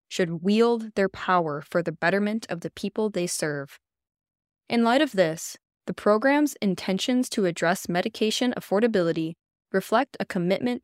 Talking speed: 145 wpm